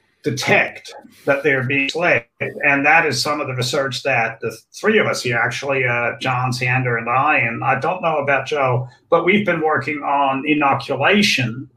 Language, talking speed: English, 185 wpm